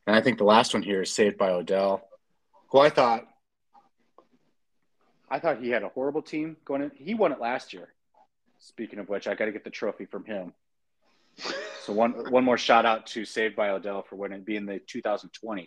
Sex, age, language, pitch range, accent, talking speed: male, 30-49, English, 100-120 Hz, American, 205 wpm